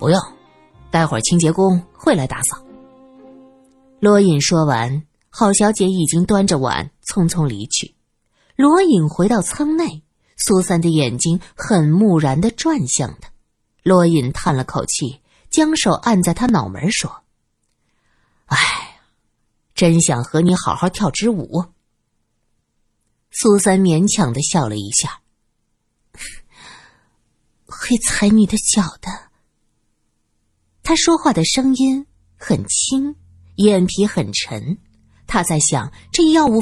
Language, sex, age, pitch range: Chinese, female, 20-39, 145-230 Hz